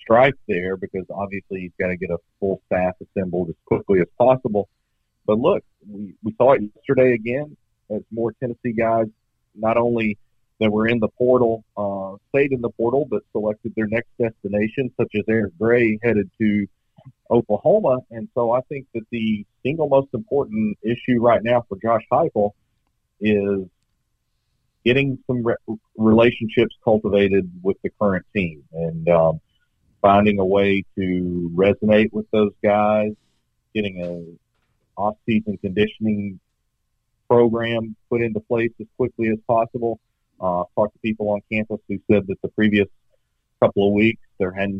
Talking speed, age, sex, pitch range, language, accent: 155 wpm, 50-69, male, 100-115 Hz, English, American